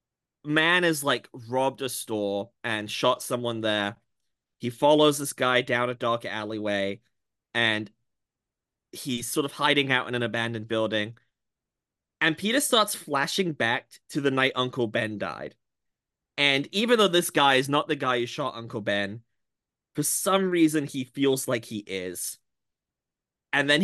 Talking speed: 155 wpm